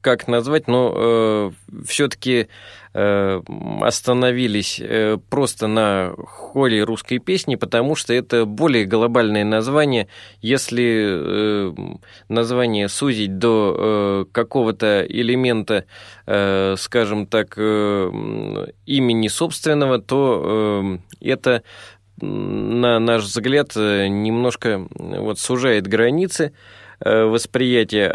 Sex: male